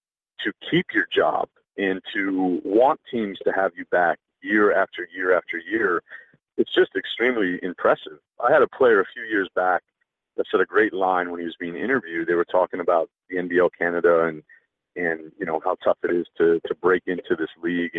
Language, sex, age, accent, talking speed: English, male, 40-59, American, 200 wpm